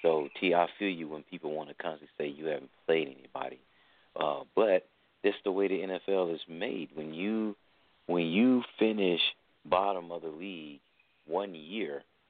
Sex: male